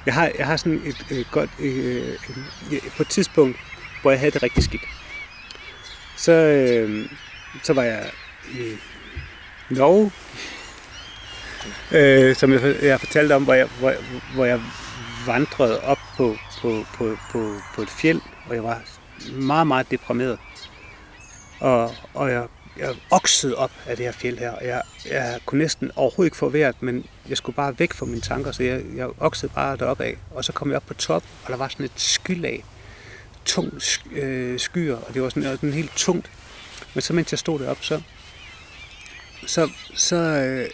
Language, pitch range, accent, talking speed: English, 120-145 Hz, Danish, 180 wpm